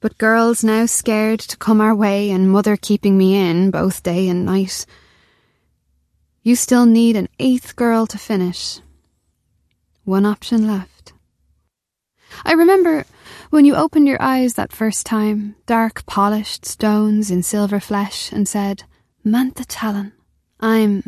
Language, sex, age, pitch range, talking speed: English, female, 20-39, 185-225 Hz, 140 wpm